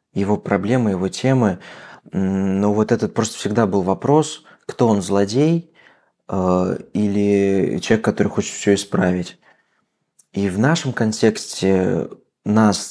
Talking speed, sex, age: 115 wpm, male, 20-39